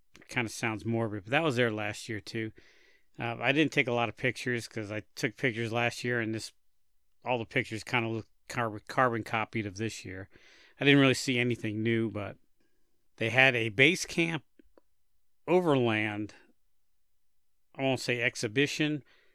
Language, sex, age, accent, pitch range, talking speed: English, male, 50-69, American, 110-130 Hz, 170 wpm